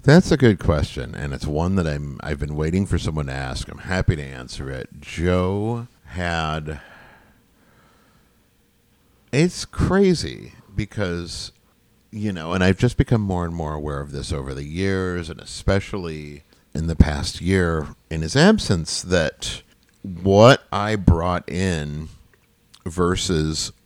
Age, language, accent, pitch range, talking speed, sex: 50-69, English, American, 80-105 Hz, 145 wpm, male